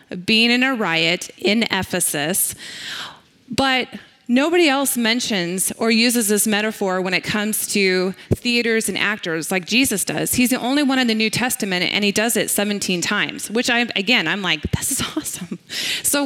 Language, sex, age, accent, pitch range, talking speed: English, female, 20-39, American, 195-260 Hz, 175 wpm